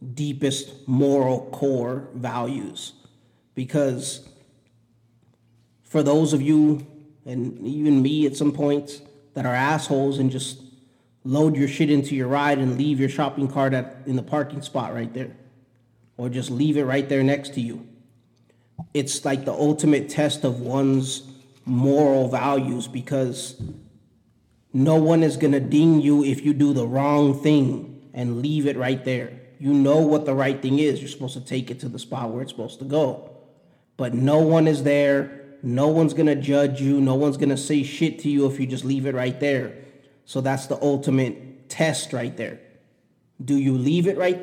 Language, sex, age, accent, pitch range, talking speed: English, male, 30-49, American, 130-145 Hz, 180 wpm